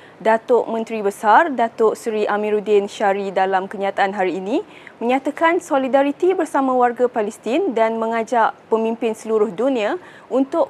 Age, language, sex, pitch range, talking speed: 20-39, Malay, female, 215-270 Hz, 125 wpm